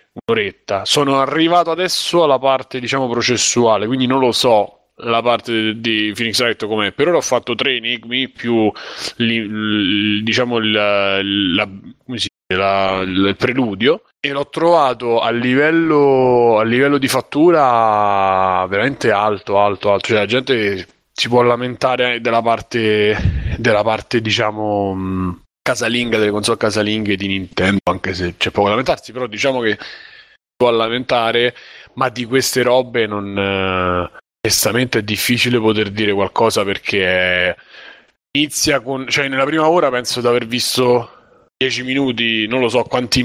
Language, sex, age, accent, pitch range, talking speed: Italian, male, 20-39, native, 105-125 Hz, 145 wpm